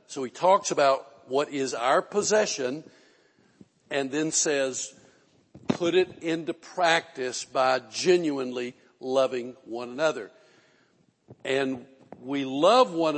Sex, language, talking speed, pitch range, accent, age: male, English, 110 wpm, 135-175 Hz, American, 60-79